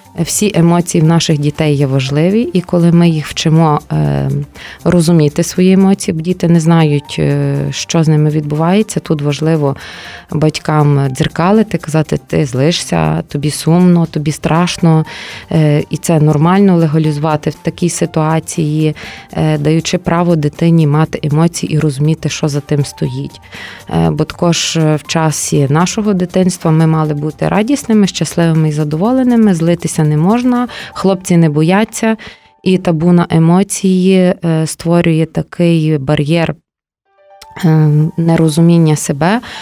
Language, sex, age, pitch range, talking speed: Ukrainian, female, 20-39, 155-180 Hz, 120 wpm